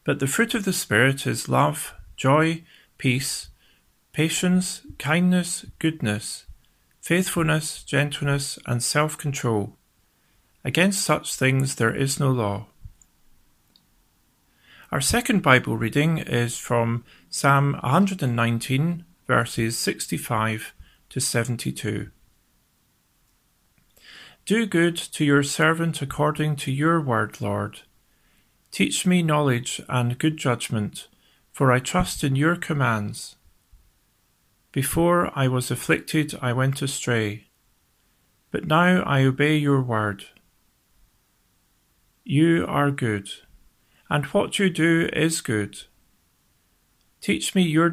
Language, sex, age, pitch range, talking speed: English, male, 40-59, 115-160 Hz, 105 wpm